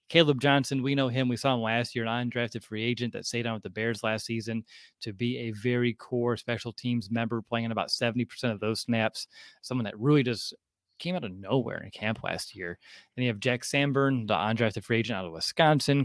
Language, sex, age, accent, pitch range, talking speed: English, male, 30-49, American, 115-145 Hz, 230 wpm